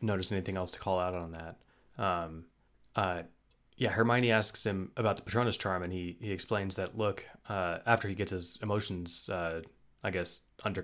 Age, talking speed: 20-39, 190 wpm